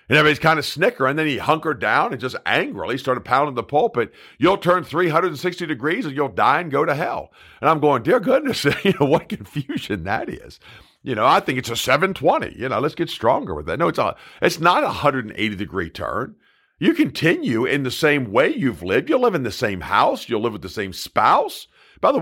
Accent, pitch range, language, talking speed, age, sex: American, 140-185 Hz, English, 230 wpm, 50-69, male